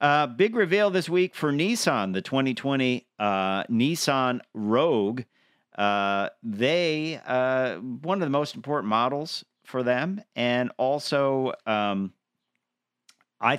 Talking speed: 120 wpm